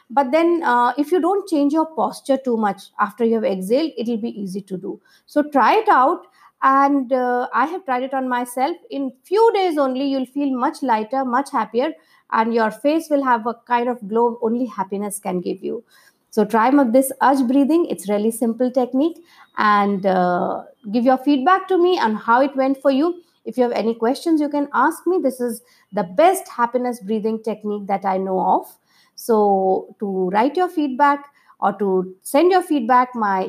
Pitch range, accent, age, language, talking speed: 220-295 Hz, Indian, 50-69, English, 200 wpm